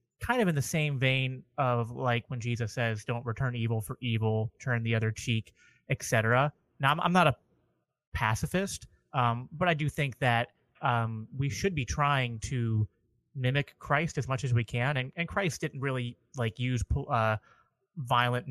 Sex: male